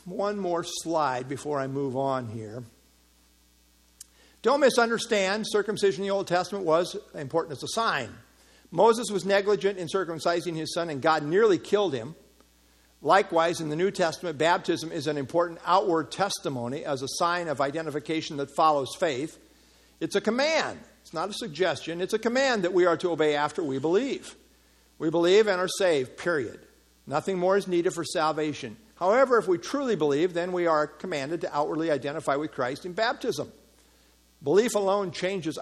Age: 50-69